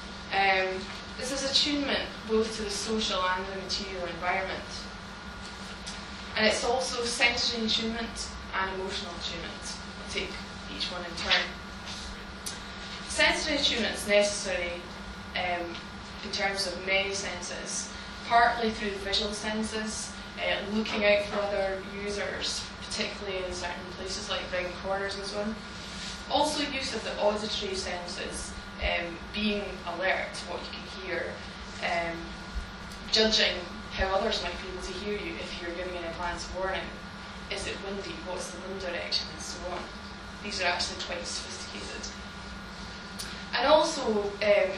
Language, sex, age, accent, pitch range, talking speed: English, female, 10-29, British, 185-210 Hz, 140 wpm